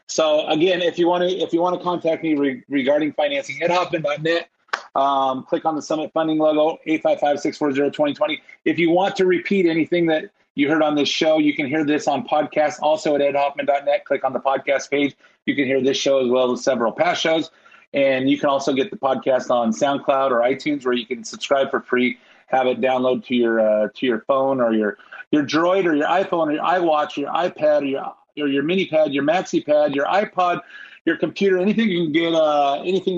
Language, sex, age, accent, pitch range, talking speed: English, male, 30-49, American, 130-160 Hz, 205 wpm